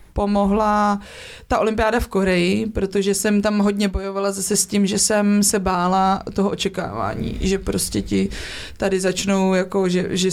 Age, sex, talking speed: 20-39, female, 155 wpm